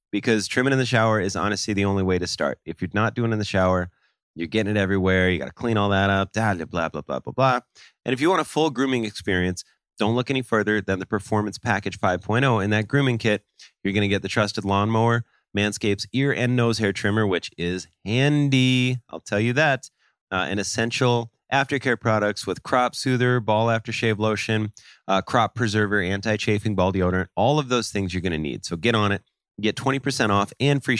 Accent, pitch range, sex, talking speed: American, 95-125 Hz, male, 215 wpm